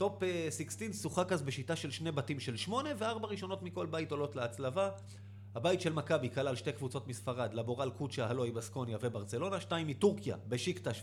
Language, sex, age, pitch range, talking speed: Hebrew, male, 30-49, 115-160 Hz, 170 wpm